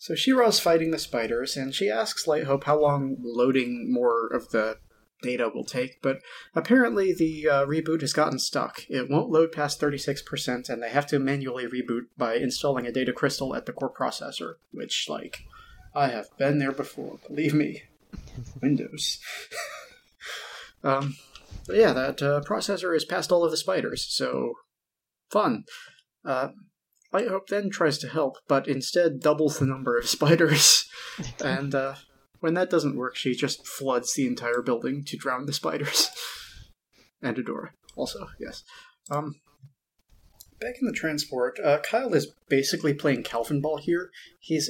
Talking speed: 160 wpm